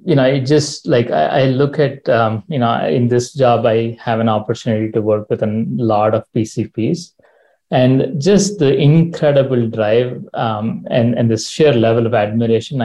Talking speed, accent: 180 wpm, Indian